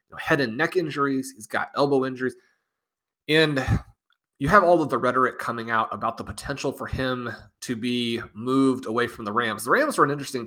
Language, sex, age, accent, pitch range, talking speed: English, male, 30-49, American, 115-140 Hz, 195 wpm